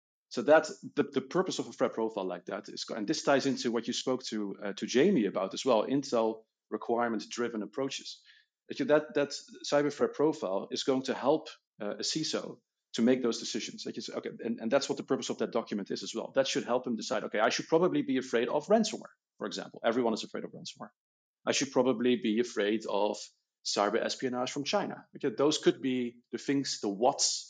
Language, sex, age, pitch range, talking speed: English, male, 40-59, 120-145 Hz, 220 wpm